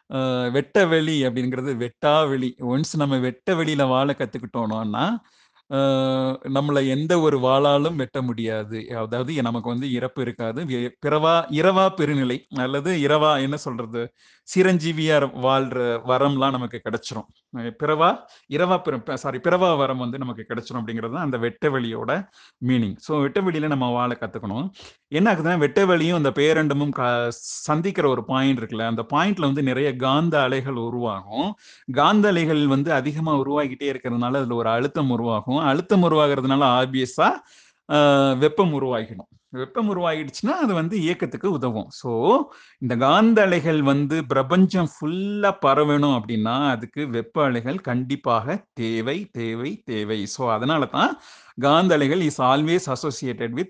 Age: 30-49